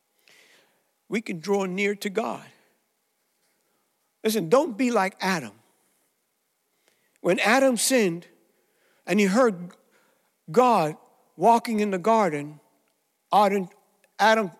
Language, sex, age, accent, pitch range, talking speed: English, male, 60-79, American, 185-240 Hz, 95 wpm